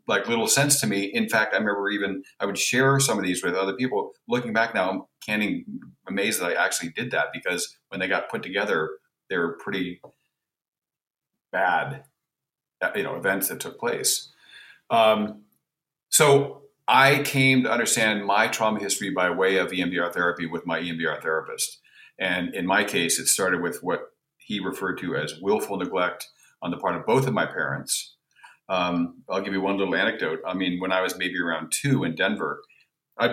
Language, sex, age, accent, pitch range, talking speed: English, male, 40-59, American, 95-140 Hz, 190 wpm